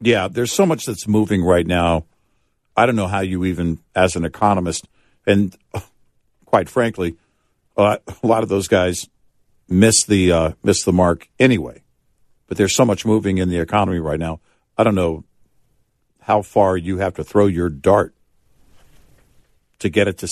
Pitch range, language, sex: 90-110 Hz, English, male